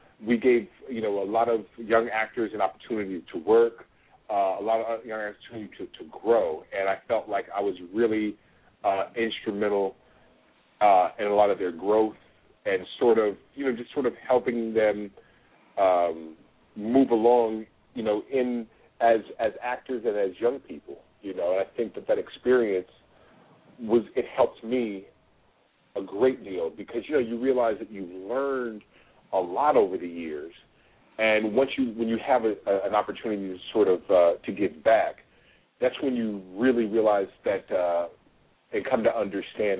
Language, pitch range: English, 100-130 Hz